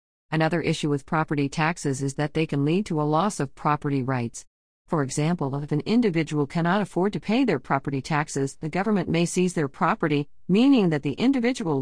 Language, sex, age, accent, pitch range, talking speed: English, female, 50-69, American, 140-170 Hz, 195 wpm